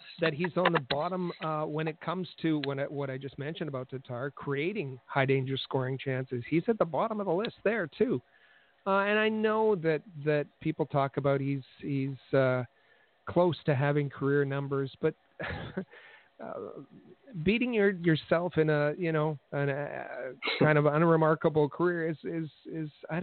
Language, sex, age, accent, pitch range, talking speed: English, male, 50-69, American, 135-170 Hz, 170 wpm